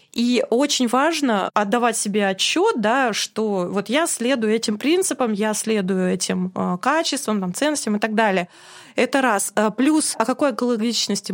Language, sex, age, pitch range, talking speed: Russian, female, 20-39, 210-265 Hz, 150 wpm